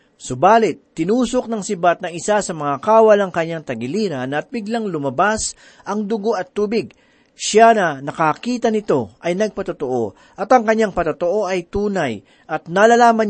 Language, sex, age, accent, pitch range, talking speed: Filipino, male, 40-59, native, 155-215 Hz, 150 wpm